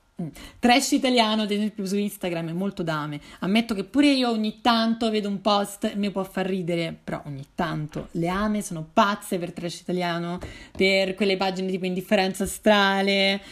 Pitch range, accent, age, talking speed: 175-225 Hz, native, 30-49, 175 wpm